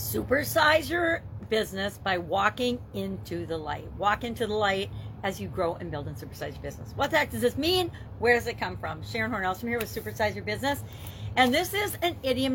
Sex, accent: female, American